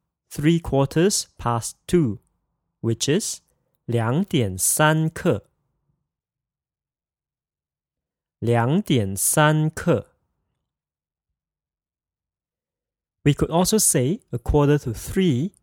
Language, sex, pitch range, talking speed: English, male, 115-160 Hz, 60 wpm